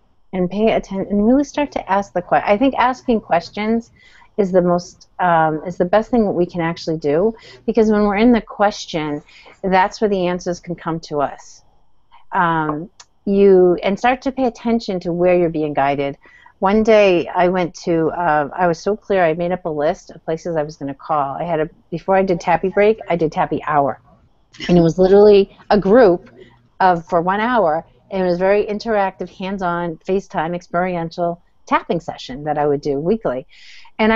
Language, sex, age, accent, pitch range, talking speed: English, female, 40-59, American, 160-210 Hz, 195 wpm